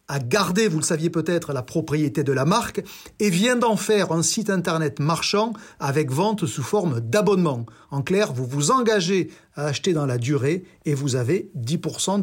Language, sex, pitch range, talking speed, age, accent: French, male, 150-210 Hz, 185 wpm, 40-59, French